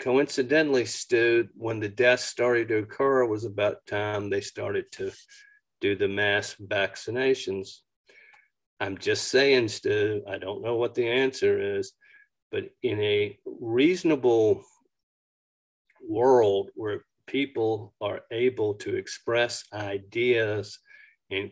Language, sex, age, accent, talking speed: English, male, 50-69, American, 115 wpm